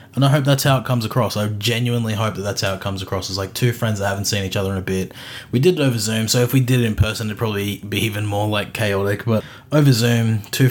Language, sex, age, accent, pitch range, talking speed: English, male, 20-39, Australian, 100-120 Hz, 290 wpm